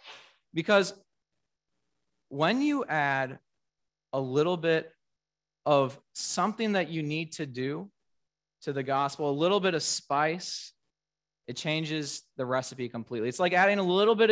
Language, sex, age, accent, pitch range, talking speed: English, male, 20-39, American, 140-195 Hz, 140 wpm